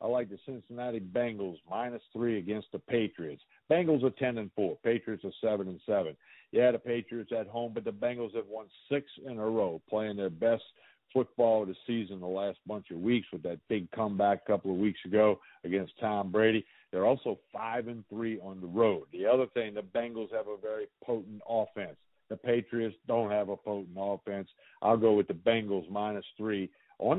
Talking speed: 200 wpm